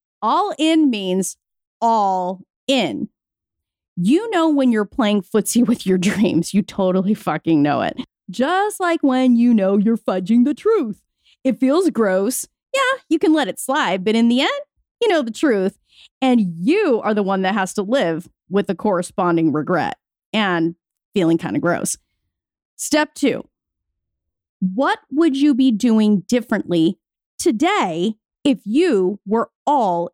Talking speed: 150 wpm